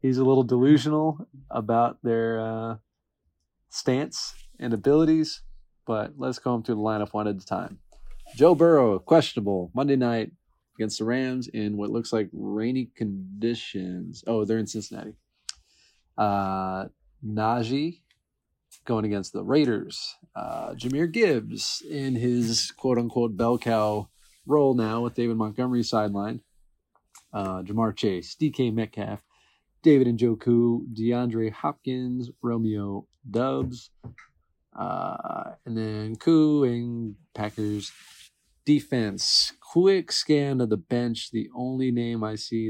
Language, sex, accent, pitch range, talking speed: English, male, American, 105-125 Hz, 120 wpm